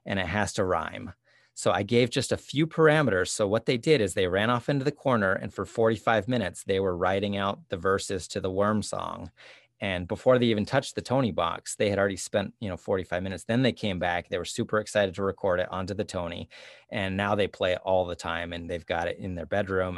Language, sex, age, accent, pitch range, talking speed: English, male, 30-49, American, 95-110 Hz, 245 wpm